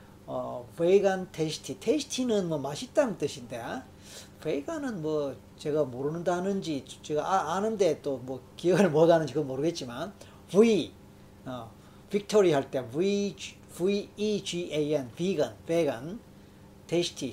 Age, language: 40-59, Korean